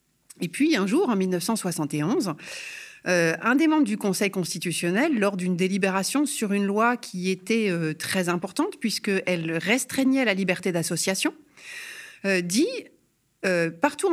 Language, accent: French, French